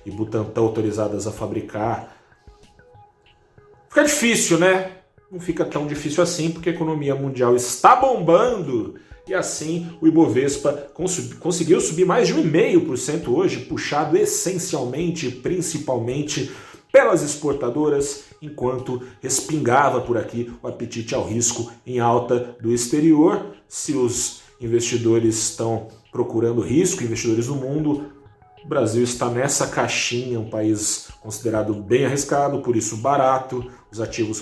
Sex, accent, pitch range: male, Brazilian, 110-150 Hz